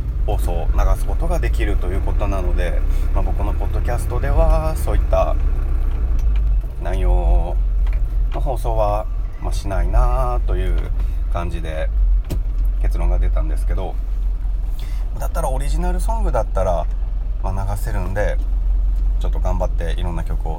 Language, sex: Japanese, male